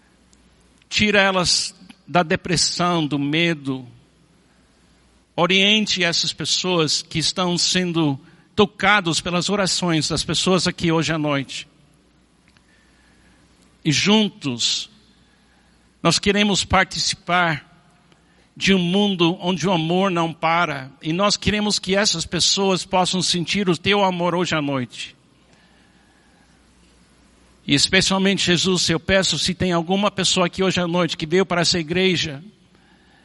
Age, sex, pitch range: 60-79, male, 165-195 Hz